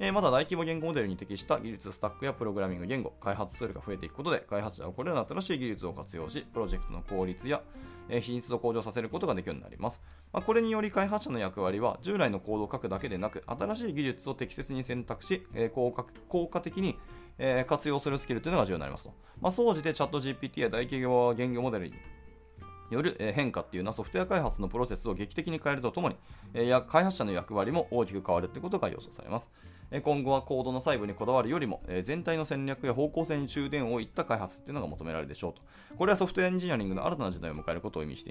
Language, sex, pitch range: Japanese, male, 90-140 Hz